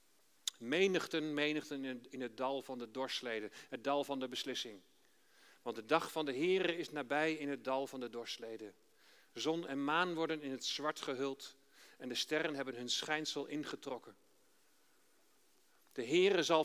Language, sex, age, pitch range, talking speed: Dutch, male, 40-59, 130-185 Hz, 160 wpm